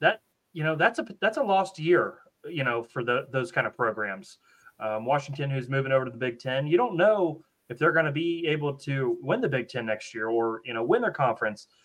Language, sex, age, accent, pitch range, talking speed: English, male, 30-49, American, 130-170 Hz, 245 wpm